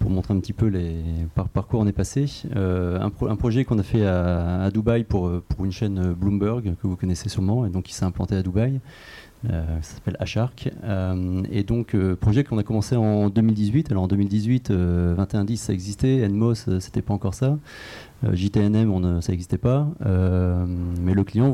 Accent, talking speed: French, 215 wpm